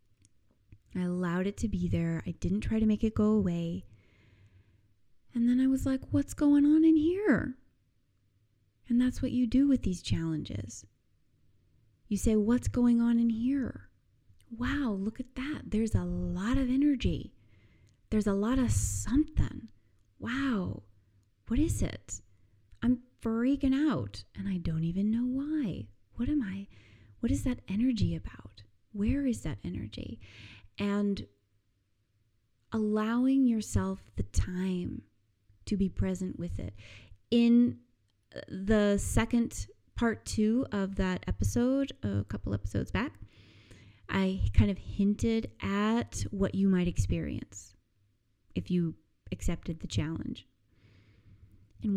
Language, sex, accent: English, female, American